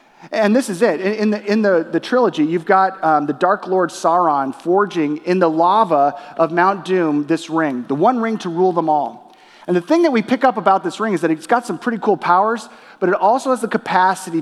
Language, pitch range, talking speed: English, 165-225 Hz, 235 wpm